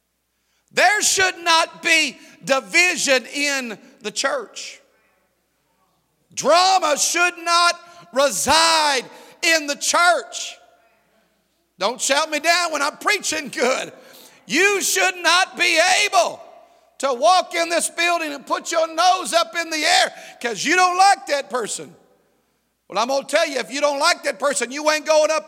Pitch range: 295-340 Hz